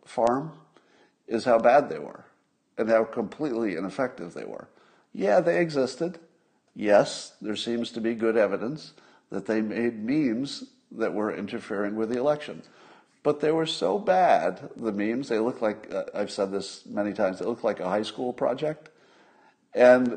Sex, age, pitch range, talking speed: male, 60-79, 105-135 Hz, 165 wpm